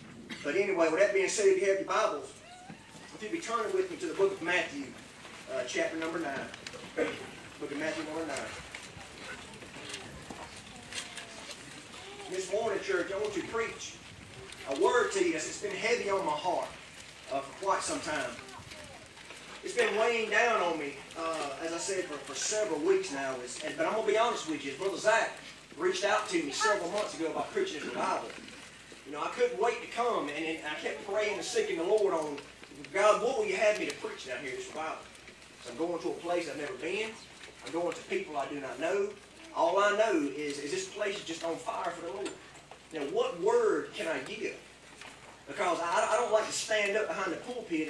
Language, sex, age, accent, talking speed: English, male, 30-49, American, 215 wpm